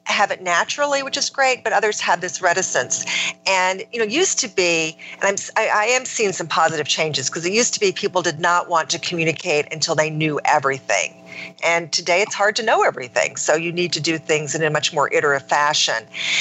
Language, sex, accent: English, female, American